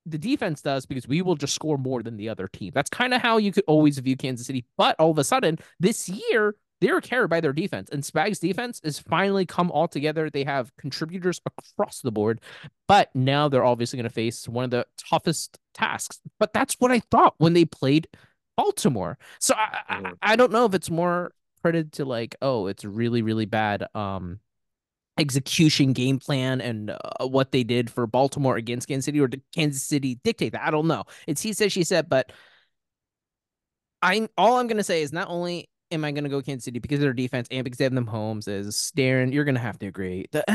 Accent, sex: American, male